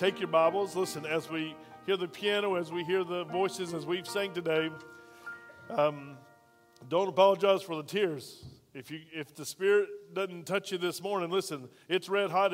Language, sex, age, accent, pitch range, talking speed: English, male, 40-59, American, 160-195 Hz, 180 wpm